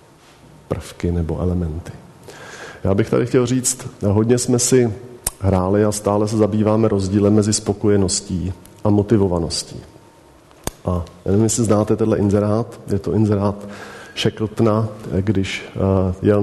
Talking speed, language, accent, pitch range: 120 wpm, Czech, native, 100-115 Hz